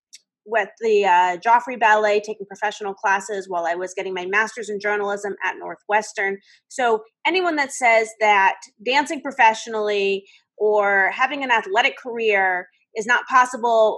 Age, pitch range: 30-49, 205-305 Hz